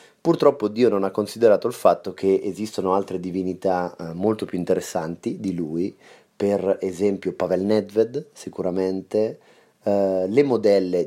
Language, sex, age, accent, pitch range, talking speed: Italian, male, 30-49, native, 95-115 Hz, 130 wpm